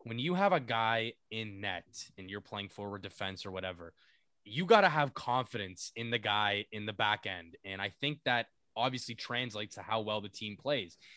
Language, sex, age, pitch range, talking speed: English, male, 20-39, 110-155 Hz, 205 wpm